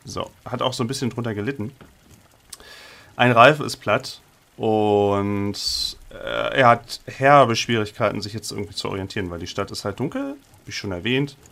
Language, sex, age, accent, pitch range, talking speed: German, male, 40-59, German, 105-130 Hz, 160 wpm